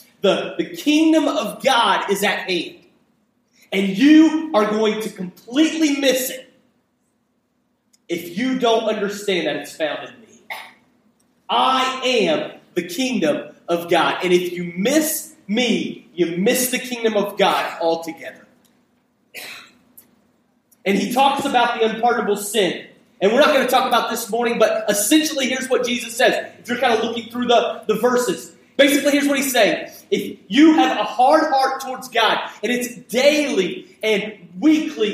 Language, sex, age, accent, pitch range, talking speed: English, male, 30-49, American, 220-275 Hz, 155 wpm